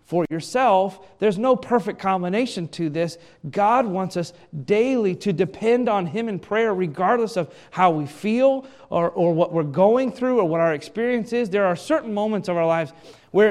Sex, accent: male, American